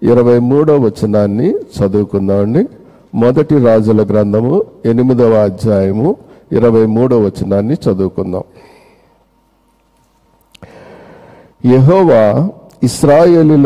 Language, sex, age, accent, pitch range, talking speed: Telugu, male, 50-69, native, 110-145 Hz, 65 wpm